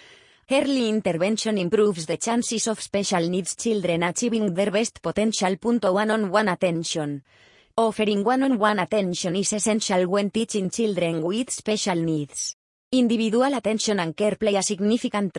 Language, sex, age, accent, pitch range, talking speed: English, female, 20-39, Spanish, 185-220 Hz, 145 wpm